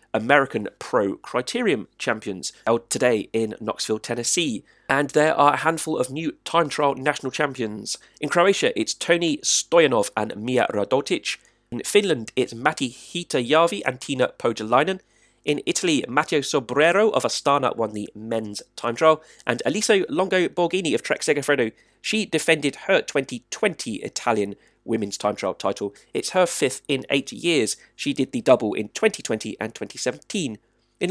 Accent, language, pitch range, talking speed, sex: British, English, 125-180 Hz, 150 wpm, male